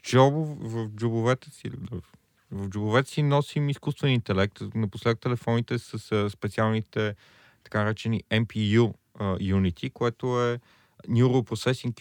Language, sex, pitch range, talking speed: Bulgarian, male, 100-115 Hz, 115 wpm